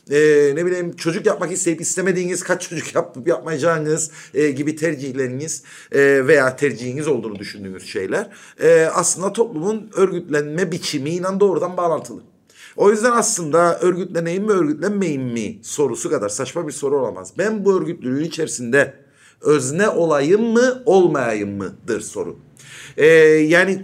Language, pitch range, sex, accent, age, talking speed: Turkish, 145-195 Hz, male, native, 50-69, 135 wpm